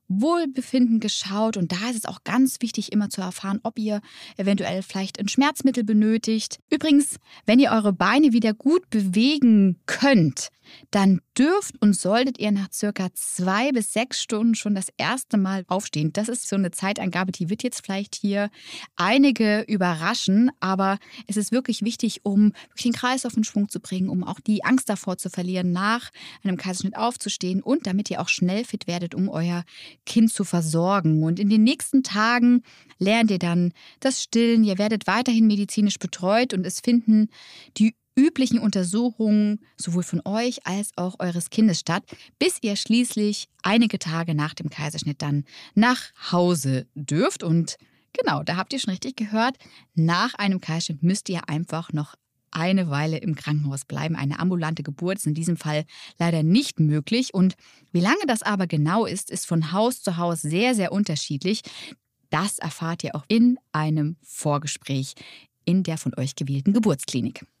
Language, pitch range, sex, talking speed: German, 175-225 Hz, female, 170 wpm